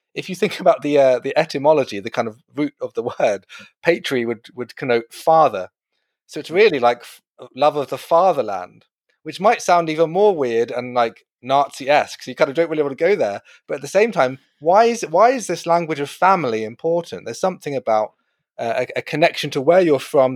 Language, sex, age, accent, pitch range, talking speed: English, male, 30-49, British, 125-165 Hz, 210 wpm